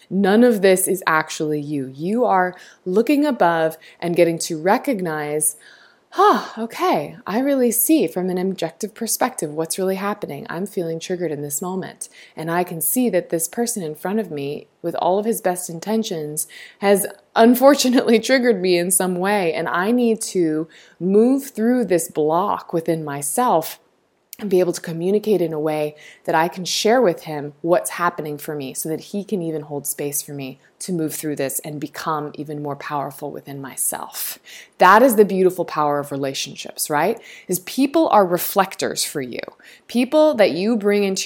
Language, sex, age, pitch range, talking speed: English, female, 20-39, 160-225 Hz, 180 wpm